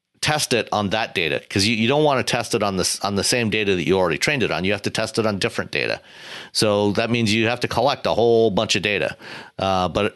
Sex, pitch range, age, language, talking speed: male, 90-110 Hz, 50-69, English, 280 wpm